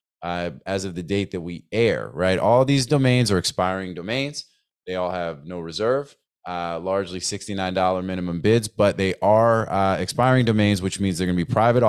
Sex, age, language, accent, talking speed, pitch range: male, 20-39, English, American, 185 wpm, 95-110 Hz